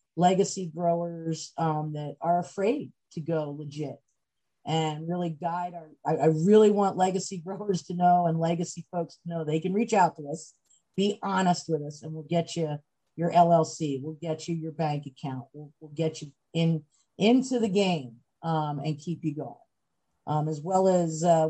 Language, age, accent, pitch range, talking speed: English, 50-69, American, 155-190 Hz, 185 wpm